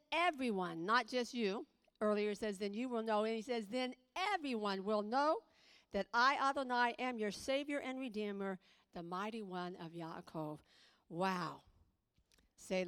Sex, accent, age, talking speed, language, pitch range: female, American, 50-69, 150 wpm, English, 185-235 Hz